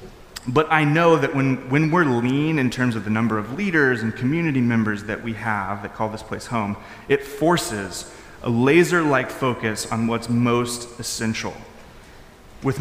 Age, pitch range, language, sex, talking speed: 30-49, 115-150 Hz, English, male, 170 wpm